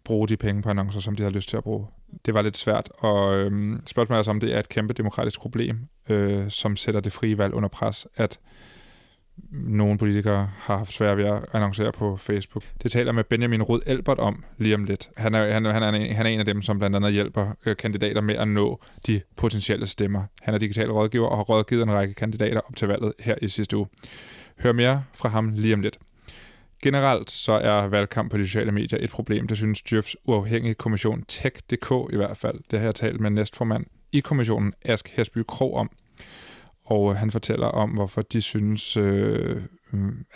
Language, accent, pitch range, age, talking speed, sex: Danish, native, 105-115 Hz, 20-39, 210 wpm, male